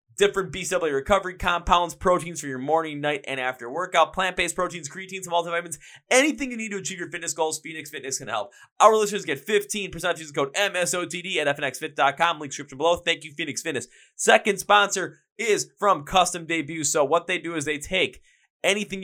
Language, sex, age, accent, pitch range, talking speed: English, male, 20-39, American, 140-180 Hz, 190 wpm